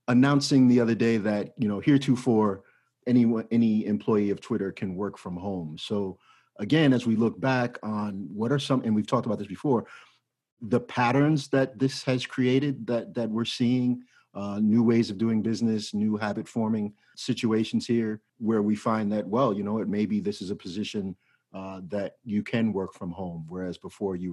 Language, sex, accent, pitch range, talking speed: English, male, American, 100-115 Hz, 190 wpm